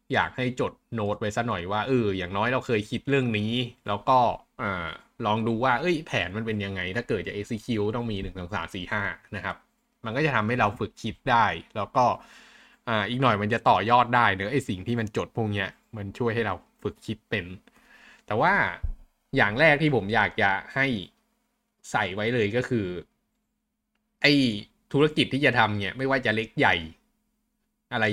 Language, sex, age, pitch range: Thai, male, 20-39, 100-130 Hz